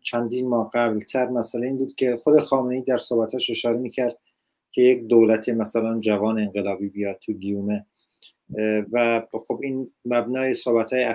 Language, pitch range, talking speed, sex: Persian, 110-135 Hz, 150 wpm, male